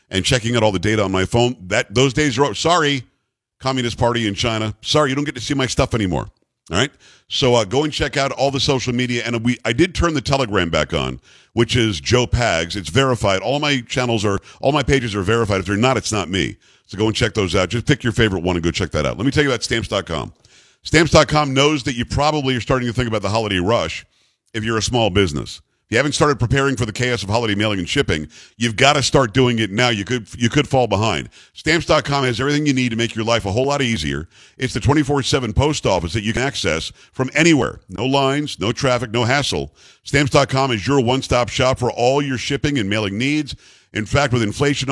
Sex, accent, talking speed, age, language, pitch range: male, American, 240 wpm, 50-69, English, 110-140 Hz